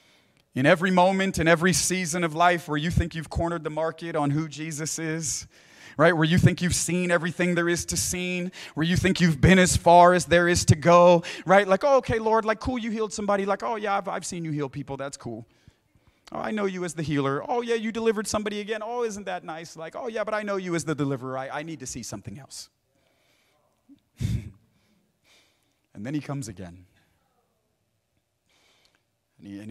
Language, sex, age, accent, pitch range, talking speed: English, male, 40-59, American, 115-170 Hz, 210 wpm